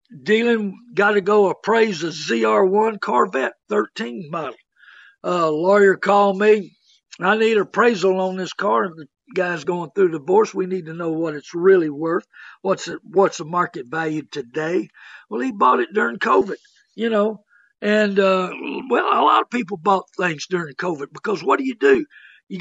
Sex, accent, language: male, American, English